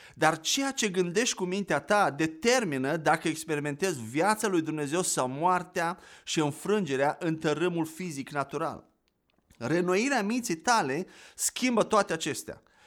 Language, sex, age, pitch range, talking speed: Romanian, male, 30-49, 155-225 Hz, 125 wpm